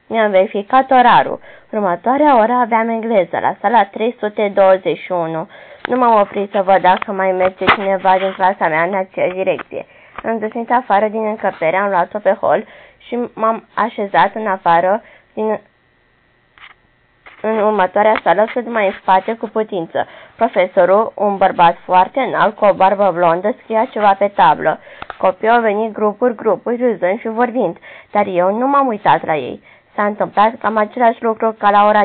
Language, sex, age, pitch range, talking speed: Romanian, female, 20-39, 190-225 Hz, 160 wpm